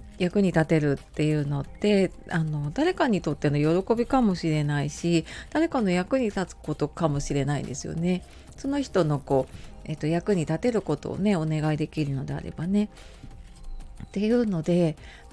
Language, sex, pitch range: Japanese, female, 150-200 Hz